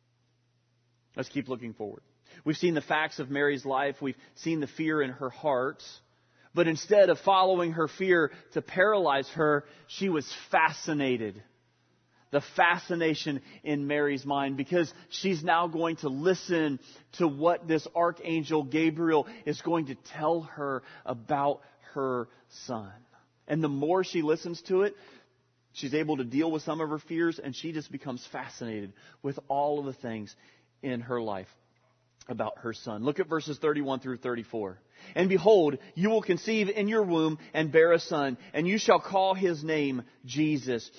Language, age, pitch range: English, 30-49, 130-175 Hz